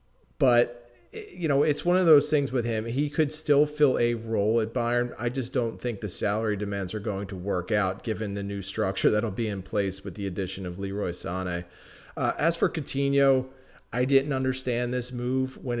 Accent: American